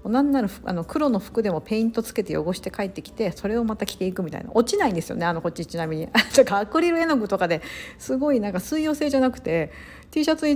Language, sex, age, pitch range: Japanese, female, 40-59, 175-245 Hz